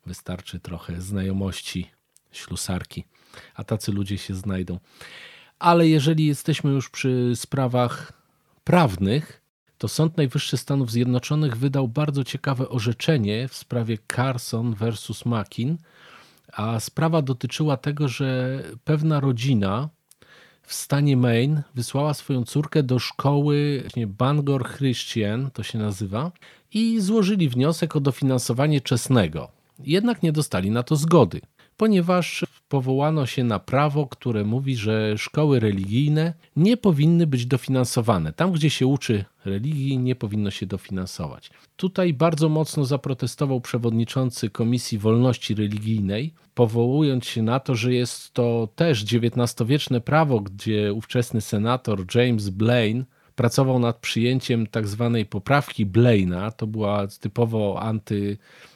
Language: Polish